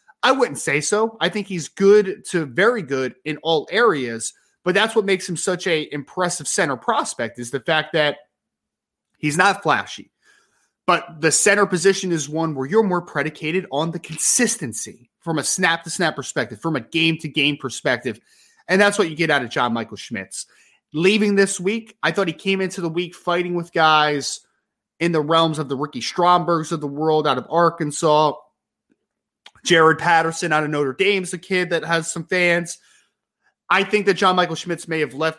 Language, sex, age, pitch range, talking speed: English, male, 20-39, 150-180 Hz, 195 wpm